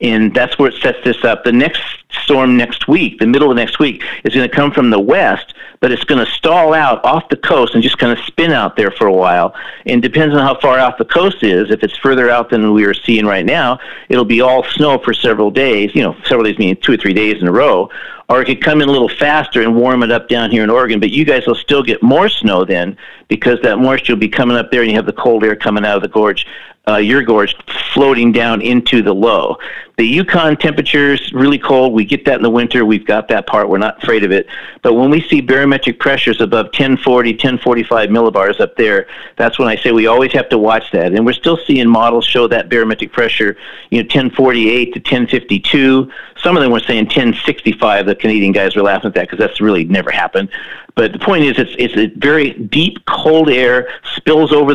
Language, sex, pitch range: English, male, 115-135 Hz